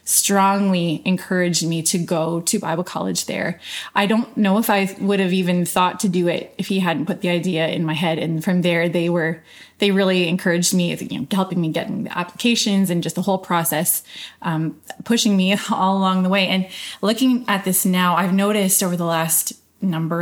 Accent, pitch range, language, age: American, 170-200 Hz, English, 20-39